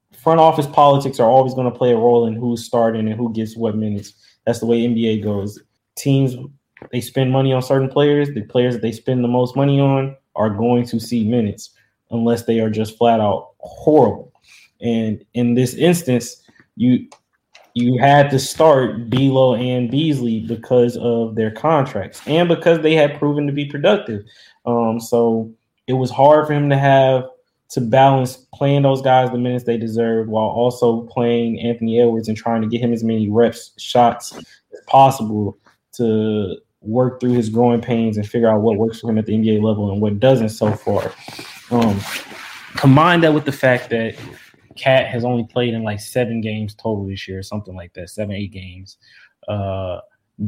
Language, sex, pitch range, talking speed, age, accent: English, male, 110-130 Hz, 185 wpm, 20-39, American